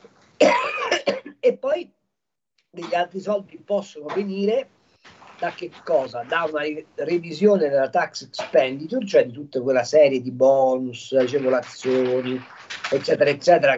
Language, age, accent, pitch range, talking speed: Italian, 50-69, native, 135-190 Hz, 115 wpm